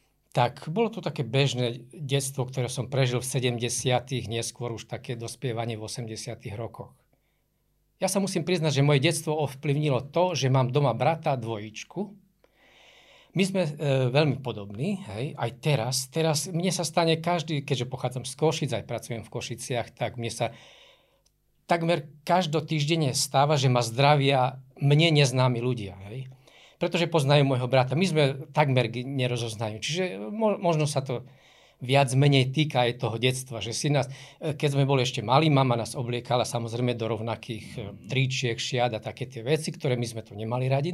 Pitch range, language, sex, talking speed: 120-155 Hz, Slovak, male, 160 wpm